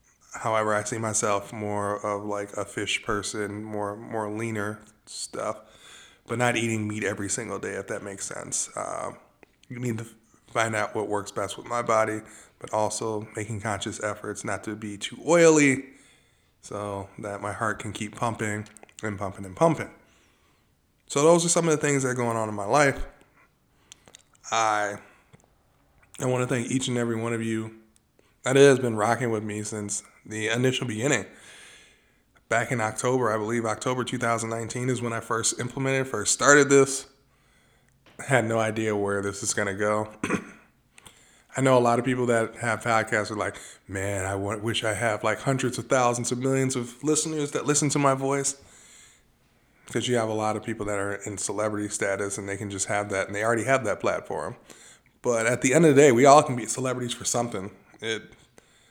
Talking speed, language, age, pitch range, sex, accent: 190 wpm, English, 20-39, 105-125 Hz, male, American